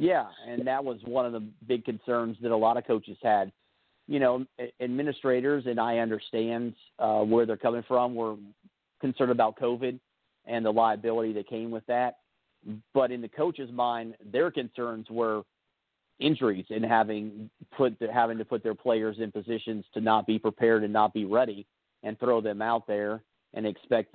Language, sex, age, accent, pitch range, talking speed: English, male, 50-69, American, 105-120 Hz, 180 wpm